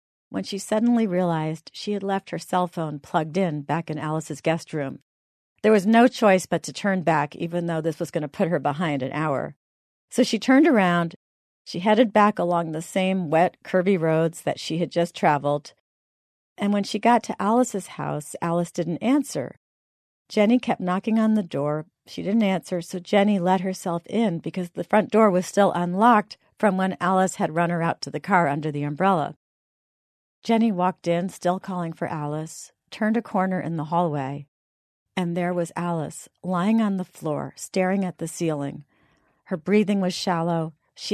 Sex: female